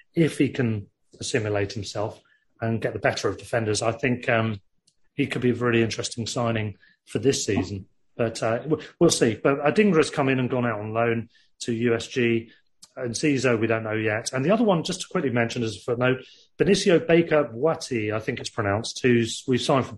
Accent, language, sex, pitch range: British, English, male, 115-140 Hz